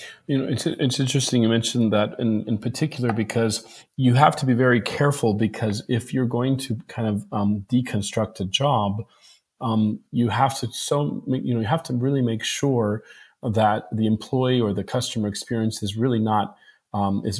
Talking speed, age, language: 185 wpm, 40-59, Polish